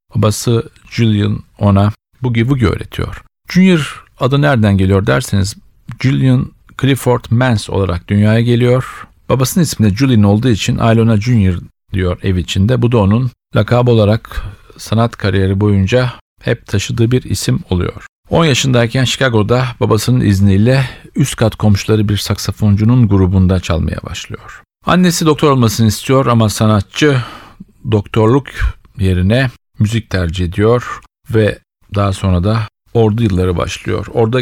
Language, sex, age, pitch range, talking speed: Turkish, male, 50-69, 100-120 Hz, 125 wpm